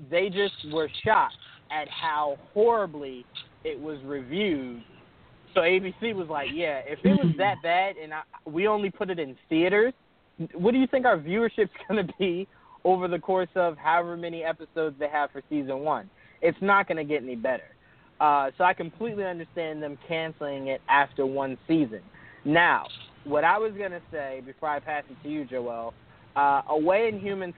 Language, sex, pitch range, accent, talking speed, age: English, male, 140-185 Hz, American, 185 wpm, 20-39